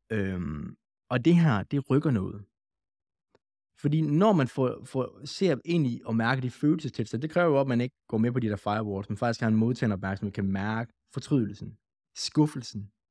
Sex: male